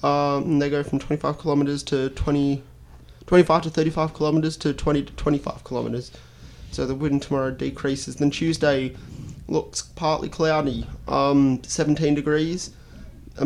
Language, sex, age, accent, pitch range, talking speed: English, male, 20-39, Australian, 135-155 Hz, 125 wpm